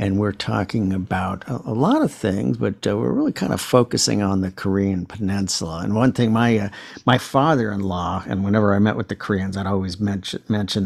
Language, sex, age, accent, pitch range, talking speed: English, male, 50-69, American, 95-110 Hz, 210 wpm